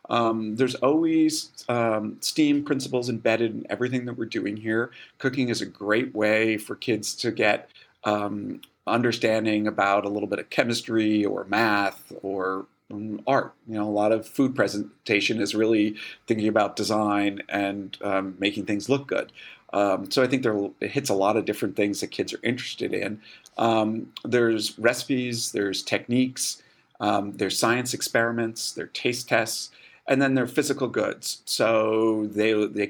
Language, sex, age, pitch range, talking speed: English, male, 40-59, 105-125 Hz, 165 wpm